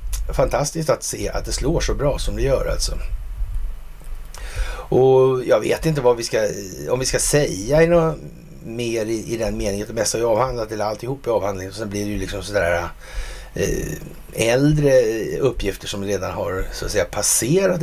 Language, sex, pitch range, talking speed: Swedish, male, 90-145 Hz, 180 wpm